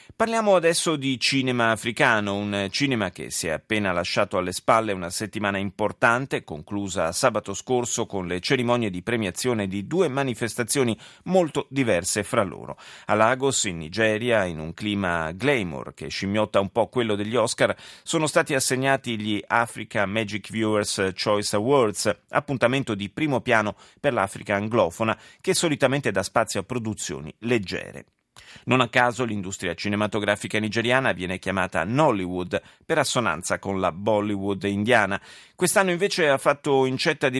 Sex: male